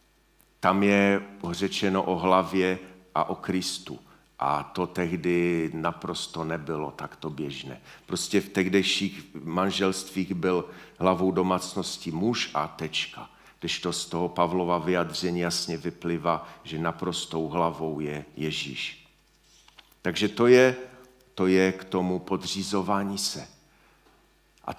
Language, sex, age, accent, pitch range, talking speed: Czech, male, 50-69, native, 95-120 Hz, 115 wpm